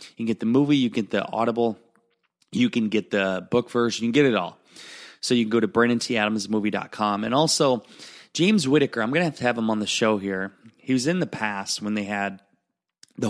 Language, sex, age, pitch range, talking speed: English, male, 20-39, 100-120 Hz, 230 wpm